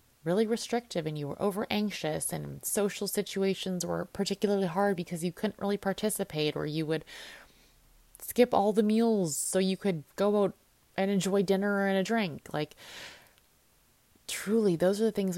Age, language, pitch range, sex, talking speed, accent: 20-39, English, 155-205 Hz, female, 165 wpm, American